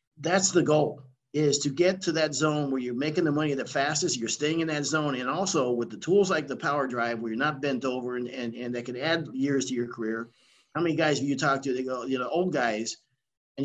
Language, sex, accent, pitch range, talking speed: English, male, American, 120-150 Hz, 260 wpm